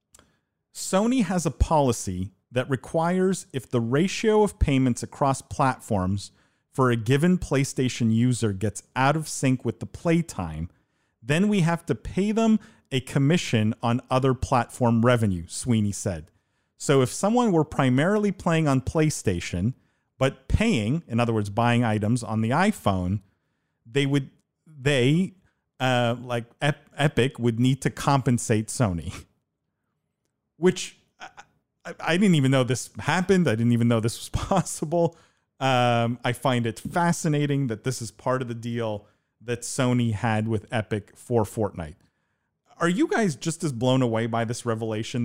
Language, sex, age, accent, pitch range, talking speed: English, male, 40-59, American, 115-155 Hz, 145 wpm